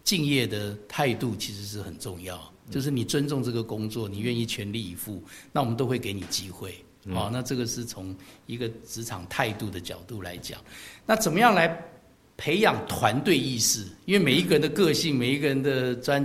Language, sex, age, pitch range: Chinese, male, 50-69, 105-135 Hz